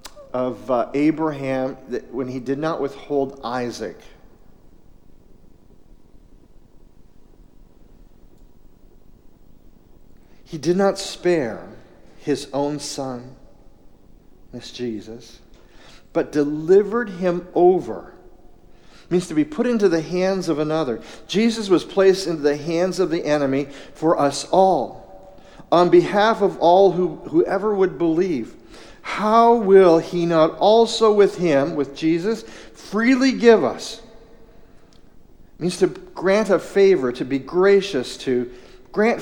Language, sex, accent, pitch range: English, male, American, 150-225 Hz